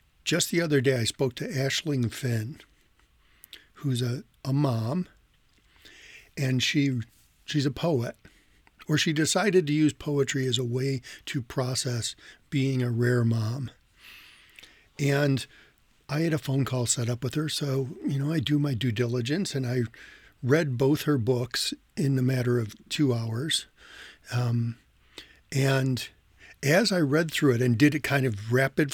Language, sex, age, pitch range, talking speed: English, male, 50-69, 125-150 Hz, 160 wpm